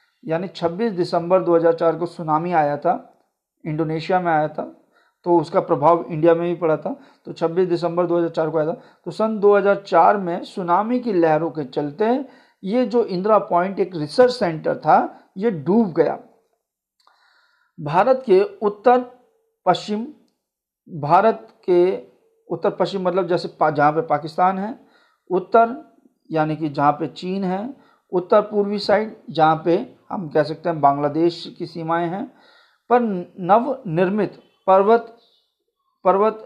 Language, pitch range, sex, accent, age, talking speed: Hindi, 165-220 Hz, male, native, 40-59, 140 wpm